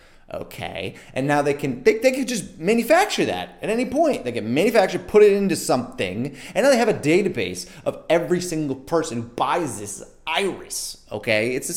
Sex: male